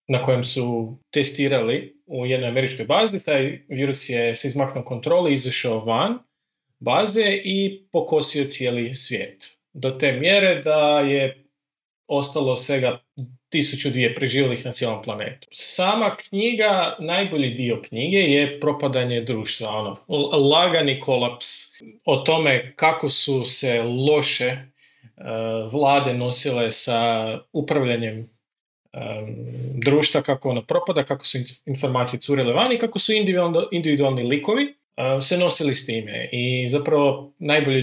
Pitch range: 125-160 Hz